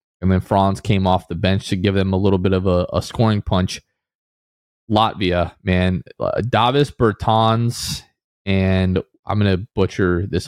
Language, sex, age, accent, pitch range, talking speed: English, male, 20-39, American, 95-115 Hz, 160 wpm